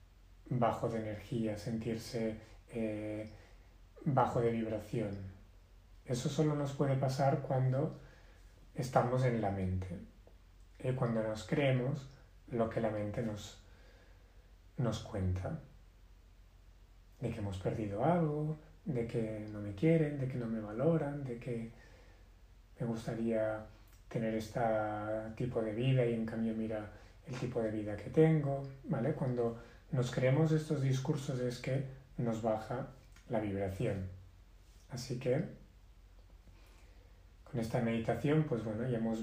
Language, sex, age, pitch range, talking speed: Spanish, male, 30-49, 100-130 Hz, 130 wpm